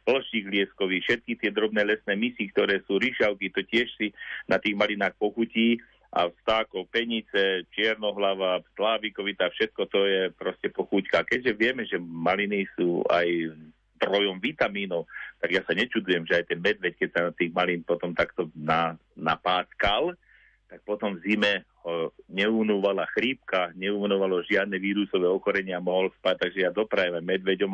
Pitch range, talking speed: 85-105 Hz, 145 wpm